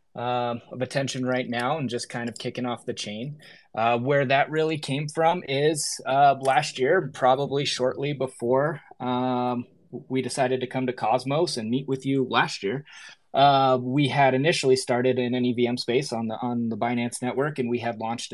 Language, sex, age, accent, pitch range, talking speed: English, male, 20-39, American, 115-135 Hz, 190 wpm